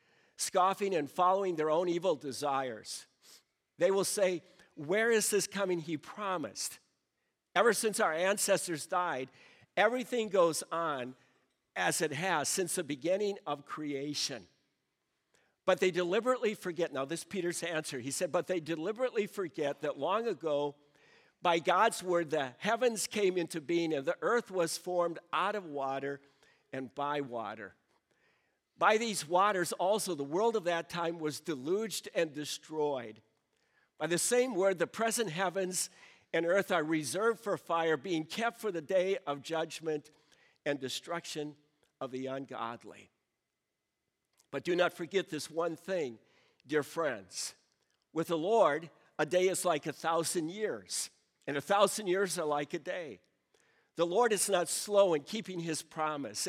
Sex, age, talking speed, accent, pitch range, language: male, 50-69, 150 wpm, American, 150-195 Hz, English